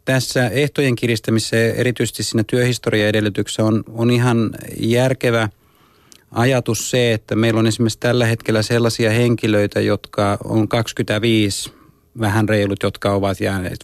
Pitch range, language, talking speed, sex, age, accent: 105-115 Hz, Finnish, 125 wpm, male, 30-49, native